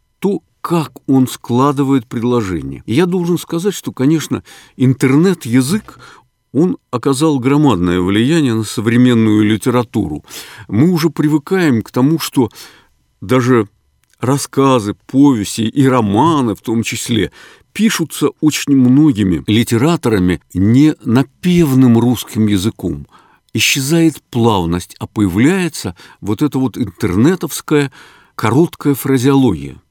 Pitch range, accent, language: 105-150 Hz, native, Russian